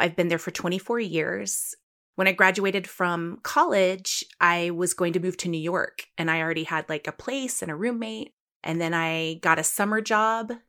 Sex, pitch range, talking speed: female, 170-200 Hz, 200 wpm